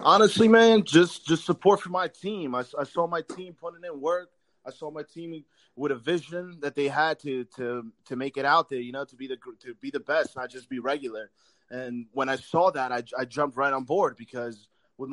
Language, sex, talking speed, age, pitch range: English, male, 235 wpm, 20-39, 130-160 Hz